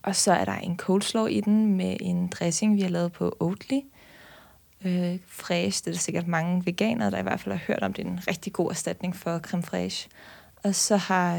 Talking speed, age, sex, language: 225 wpm, 20-39, female, Danish